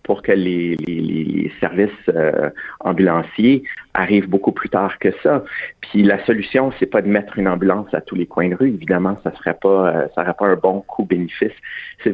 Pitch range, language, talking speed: 90-105 Hz, French, 210 wpm